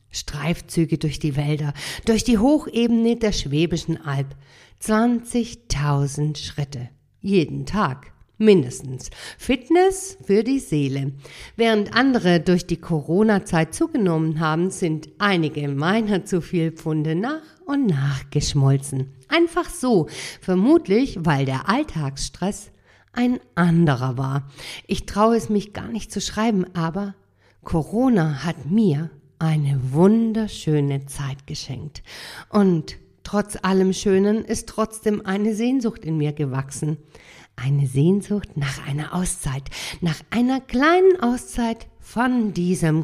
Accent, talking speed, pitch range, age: German, 115 wpm, 145-210 Hz, 50-69